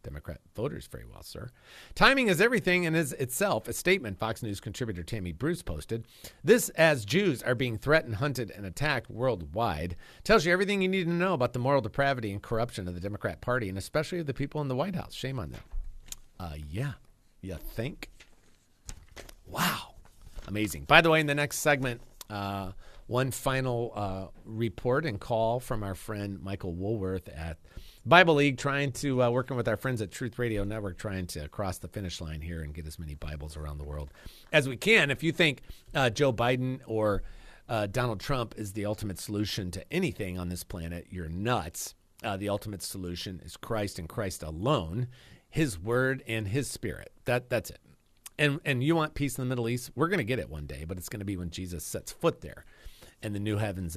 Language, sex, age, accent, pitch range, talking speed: English, male, 40-59, American, 90-135 Hz, 200 wpm